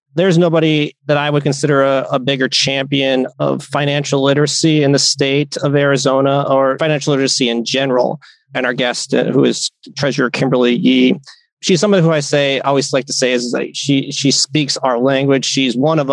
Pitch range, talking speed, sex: 130-155 Hz, 190 wpm, male